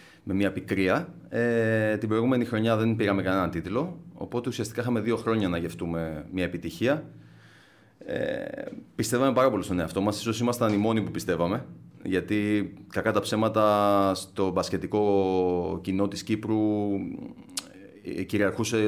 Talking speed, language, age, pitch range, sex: 135 wpm, Greek, 30-49, 95-120 Hz, male